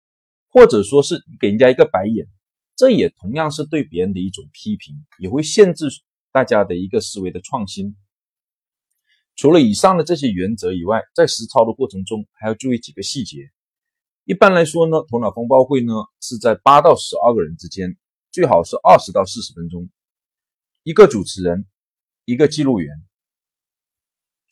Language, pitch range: Chinese, 105-170 Hz